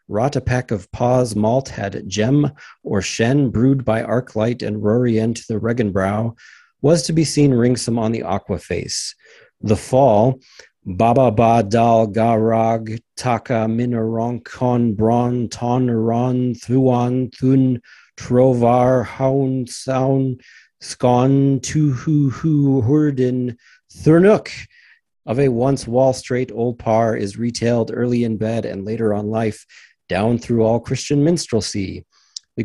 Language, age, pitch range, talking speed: English, 40-59, 110-130 Hz, 135 wpm